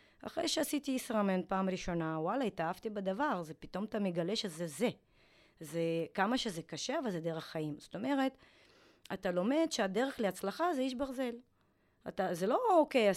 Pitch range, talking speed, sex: 175-270 Hz, 165 wpm, female